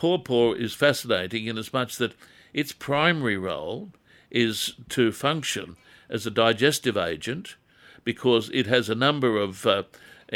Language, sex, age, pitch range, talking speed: English, male, 60-79, 105-130 Hz, 140 wpm